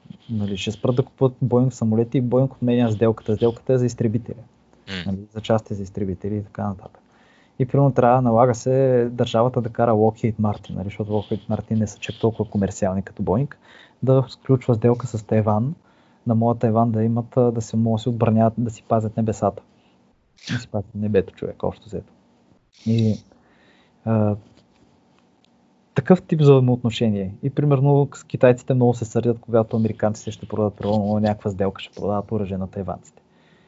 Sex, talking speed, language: male, 165 wpm, Bulgarian